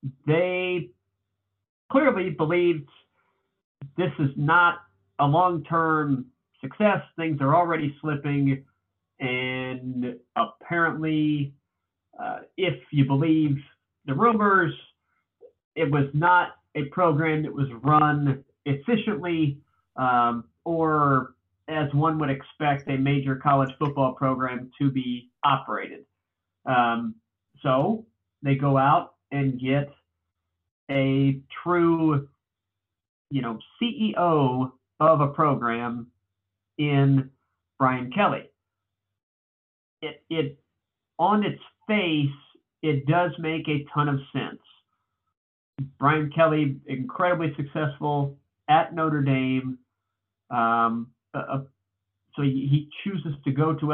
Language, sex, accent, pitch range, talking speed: English, male, American, 125-155 Hz, 100 wpm